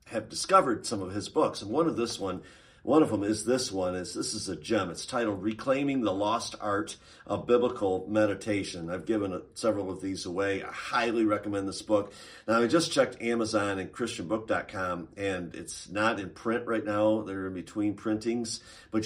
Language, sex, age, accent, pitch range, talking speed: English, male, 50-69, American, 100-125 Hz, 195 wpm